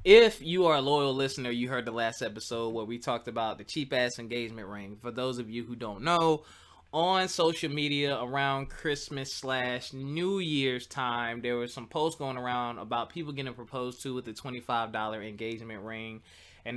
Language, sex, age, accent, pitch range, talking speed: English, male, 20-39, American, 120-150 Hz, 185 wpm